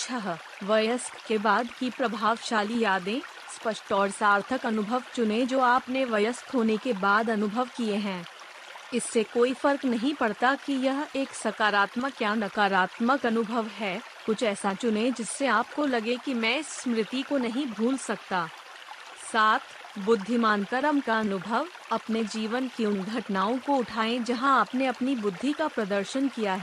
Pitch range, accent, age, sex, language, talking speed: 215-255 Hz, native, 30-49, female, Hindi, 150 wpm